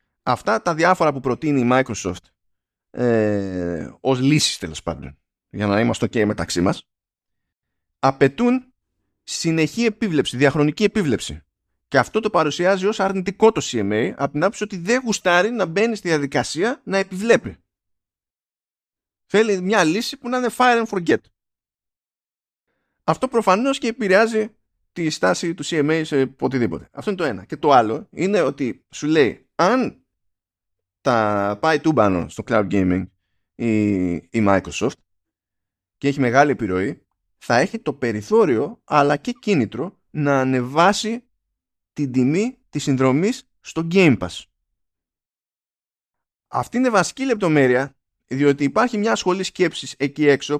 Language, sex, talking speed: Greek, male, 135 wpm